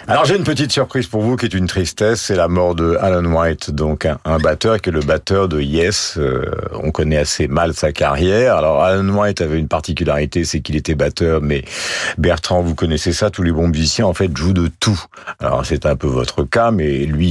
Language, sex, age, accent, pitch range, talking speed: French, male, 50-69, French, 80-100 Hz, 230 wpm